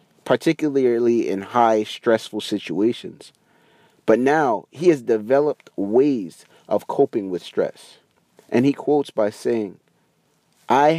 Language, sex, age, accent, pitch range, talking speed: English, male, 30-49, American, 110-145 Hz, 115 wpm